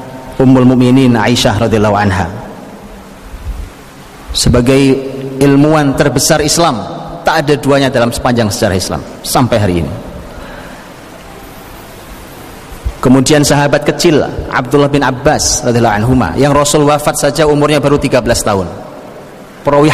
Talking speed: 95 wpm